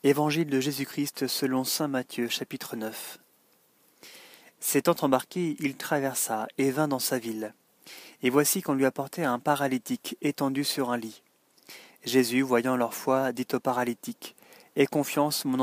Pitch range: 125-145 Hz